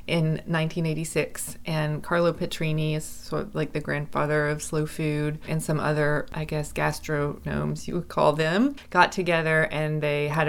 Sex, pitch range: female, 150-170 Hz